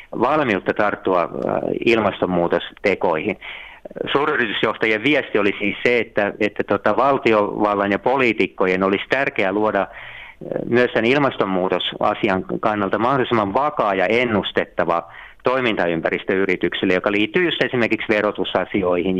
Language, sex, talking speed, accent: Finnish, male, 90 wpm, native